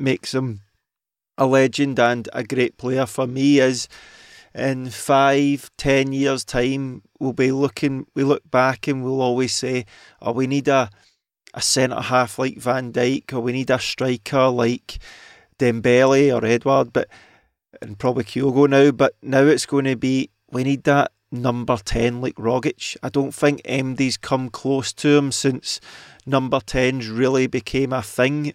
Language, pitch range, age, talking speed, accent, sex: English, 125-135 Hz, 30-49, 165 wpm, British, male